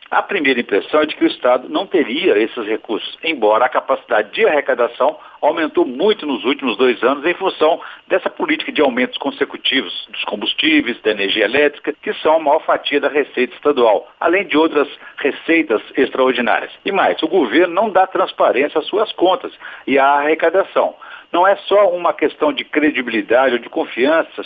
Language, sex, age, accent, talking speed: Portuguese, male, 60-79, Brazilian, 175 wpm